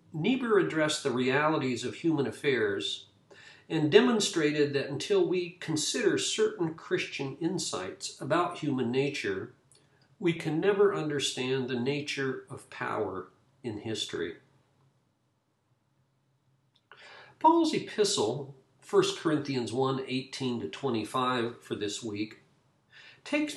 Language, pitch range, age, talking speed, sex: English, 135-185 Hz, 50-69, 100 wpm, male